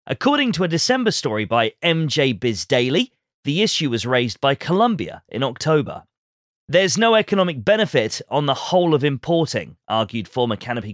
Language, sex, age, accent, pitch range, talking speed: English, male, 30-49, British, 120-185 Hz, 155 wpm